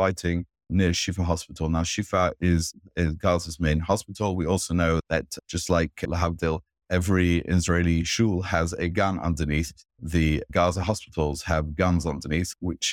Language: English